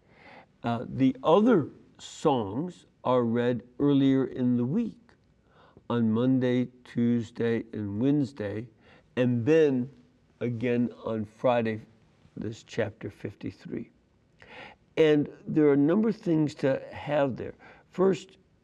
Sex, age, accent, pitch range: male, 60-79, American, 120-150 Hz